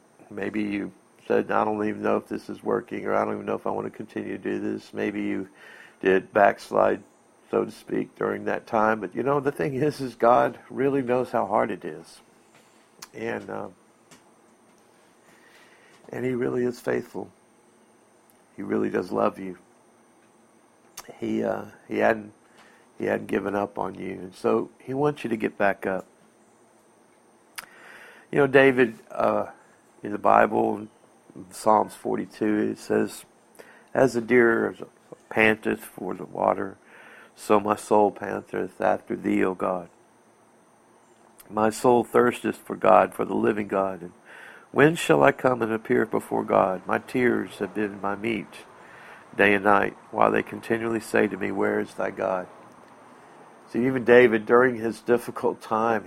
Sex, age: male, 60-79